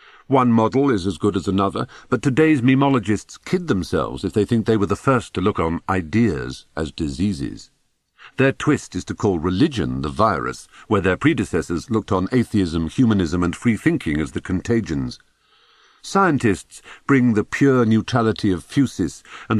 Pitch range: 95-125 Hz